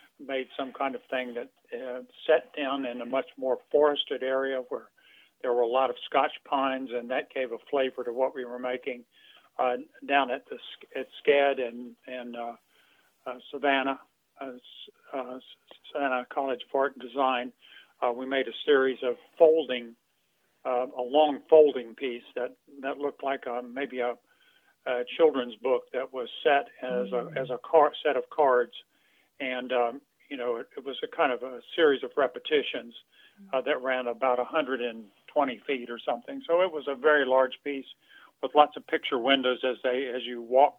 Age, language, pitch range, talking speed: 50-69, English, 125-145 Hz, 180 wpm